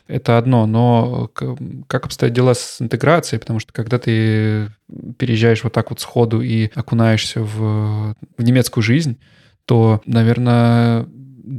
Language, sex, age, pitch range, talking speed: Russian, male, 20-39, 115-125 Hz, 130 wpm